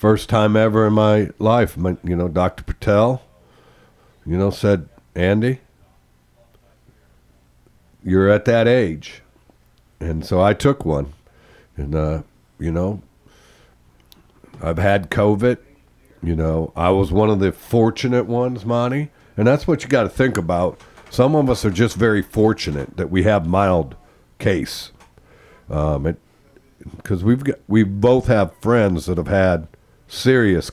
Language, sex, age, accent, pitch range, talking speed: English, male, 60-79, American, 80-110 Hz, 140 wpm